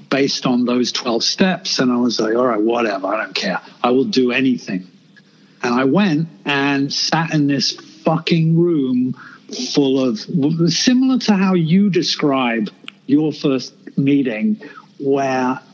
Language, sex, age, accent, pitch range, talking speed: English, male, 50-69, British, 135-185 Hz, 150 wpm